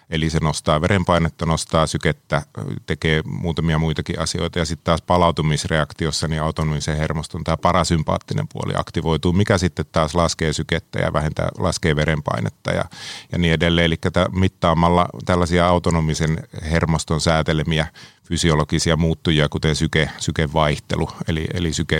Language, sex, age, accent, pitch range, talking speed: Finnish, male, 30-49, native, 80-90 Hz, 130 wpm